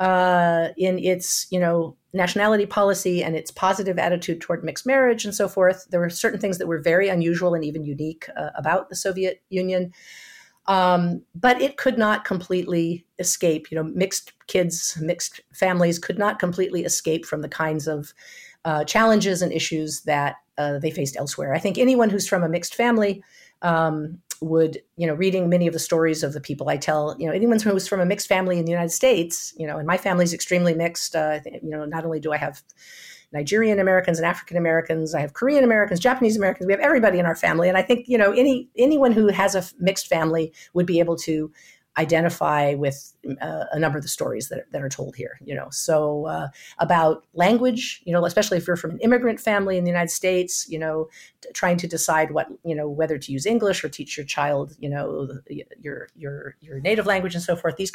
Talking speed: 210 wpm